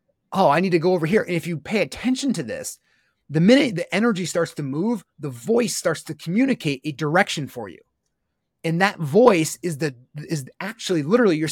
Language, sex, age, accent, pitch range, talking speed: English, male, 30-49, American, 150-200 Hz, 205 wpm